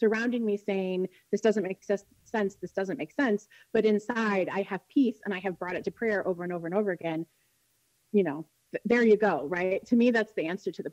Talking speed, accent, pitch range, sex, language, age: 230 wpm, American, 190-245 Hz, female, English, 30-49